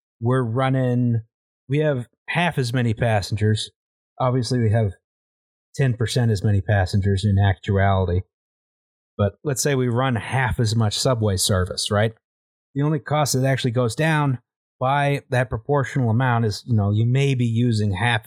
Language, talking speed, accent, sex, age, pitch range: English, 155 wpm, American, male, 30-49, 110-140 Hz